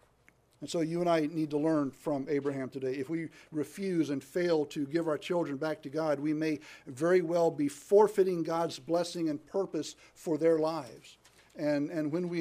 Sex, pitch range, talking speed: male, 140-165 Hz, 195 wpm